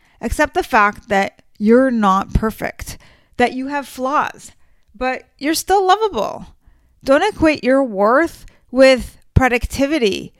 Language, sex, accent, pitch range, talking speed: English, female, American, 220-275 Hz, 120 wpm